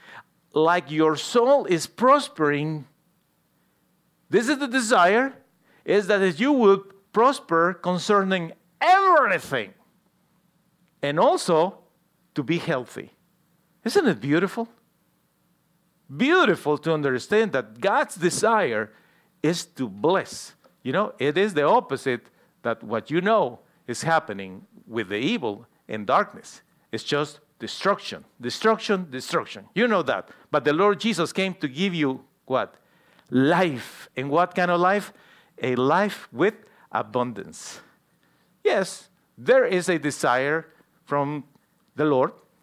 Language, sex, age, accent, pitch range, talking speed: English, male, 50-69, Mexican, 145-200 Hz, 120 wpm